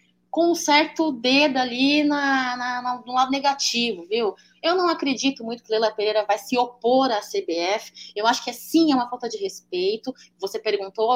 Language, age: Portuguese, 20-39